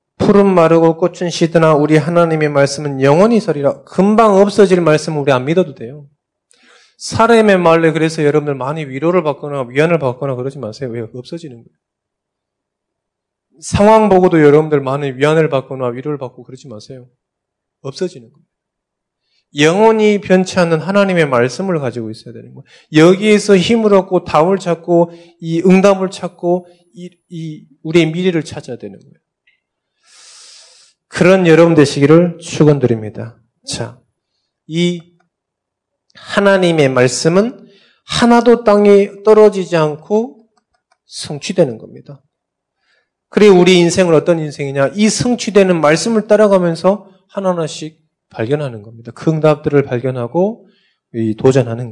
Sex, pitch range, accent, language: male, 140-185 Hz, native, Korean